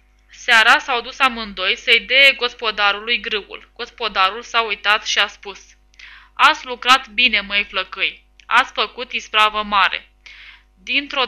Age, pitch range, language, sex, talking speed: 10-29, 210-250 Hz, Romanian, female, 130 wpm